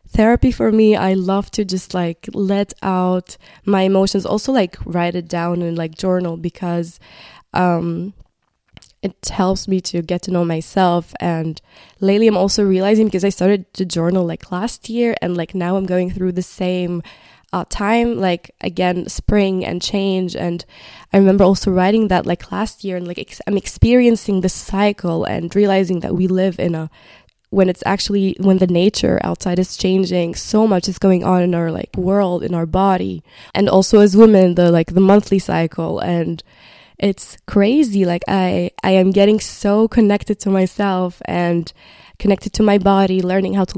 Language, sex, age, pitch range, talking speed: English, female, 20-39, 175-200 Hz, 180 wpm